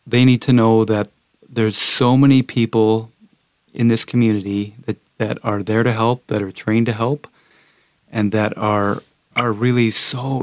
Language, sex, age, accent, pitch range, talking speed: English, male, 30-49, American, 105-120 Hz, 165 wpm